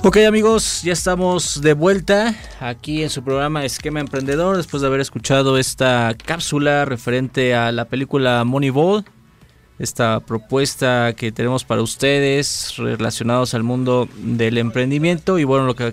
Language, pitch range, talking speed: Spanish, 120-145 Hz, 145 wpm